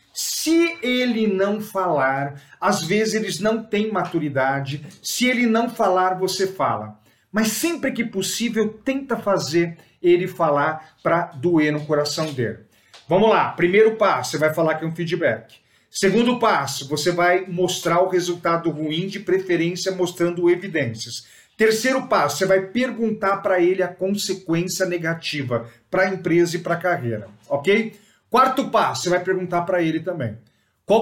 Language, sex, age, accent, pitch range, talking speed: Portuguese, male, 50-69, Brazilian, 160-205 Hz, 155 wpm